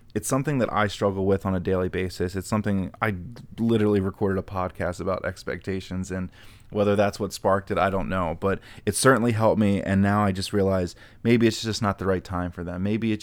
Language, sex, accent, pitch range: English, male, American, 95-105 Hz